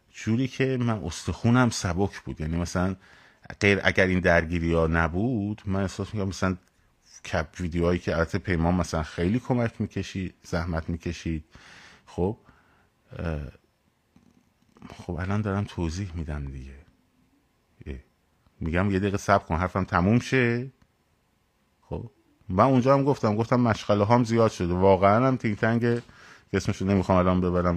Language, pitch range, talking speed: Persian, 85-110 Hz, 135 wpm